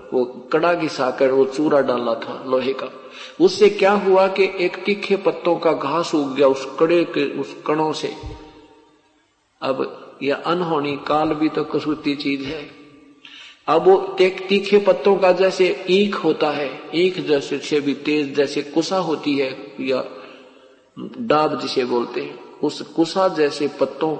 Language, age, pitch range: Hindi, 50-69, 140-180 Hz